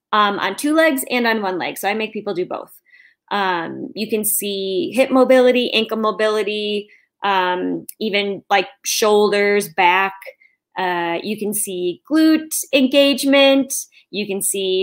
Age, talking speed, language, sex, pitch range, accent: 10-29, 145 wpm, English, female, 190-225 Hz, American